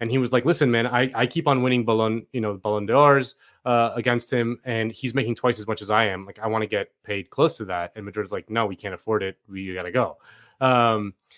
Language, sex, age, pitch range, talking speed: English, male, 30-49, 110-140 Hz, 265 wpm